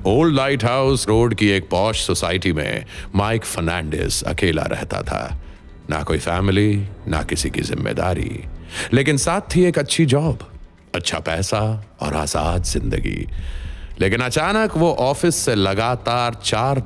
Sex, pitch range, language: male, 90-130 Hz, Hindi